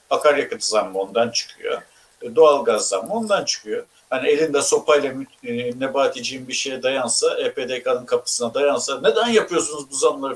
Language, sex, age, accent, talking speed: Turkish, male, 60-79, native, 125 wpm